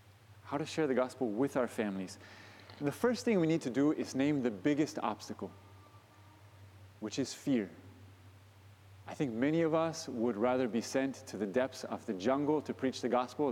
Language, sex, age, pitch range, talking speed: English, male, 30-49, 100-150 Hz, 185 wpm